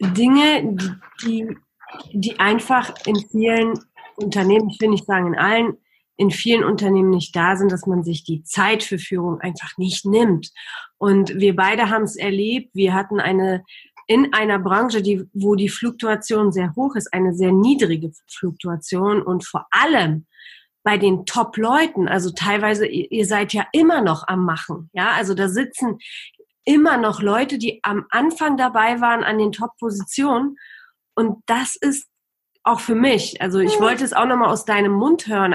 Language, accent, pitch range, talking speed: German, German, 190-230 Hz, 165 wpm